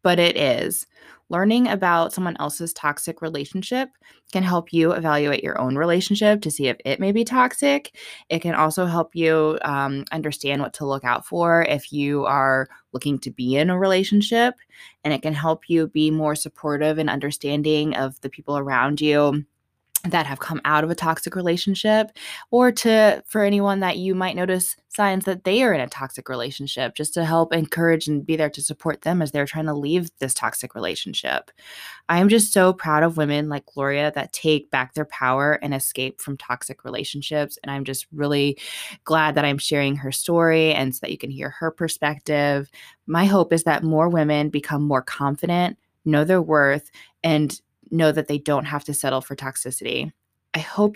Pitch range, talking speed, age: 145-175 Hz, 190 wpm, 20-39